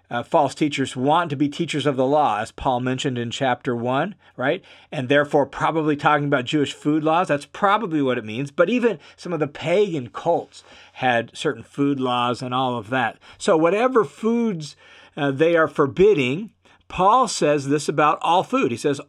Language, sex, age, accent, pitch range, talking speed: English, male, 50-69, American, 135-195 Hz, 190 wpm